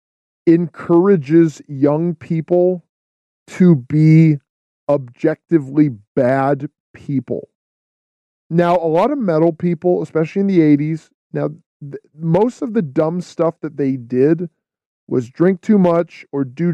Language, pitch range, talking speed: English, 140-175 Hz, 120 wpm